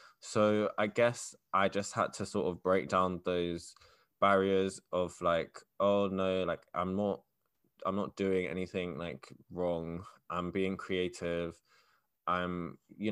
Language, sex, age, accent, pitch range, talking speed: English, male, 20-39, British, 90-105 Hz, 140 wpm